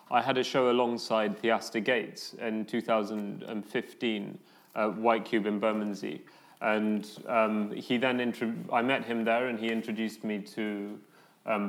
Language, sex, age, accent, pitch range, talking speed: English, male, 30-49, British, 105-120 Hz, 150 wpm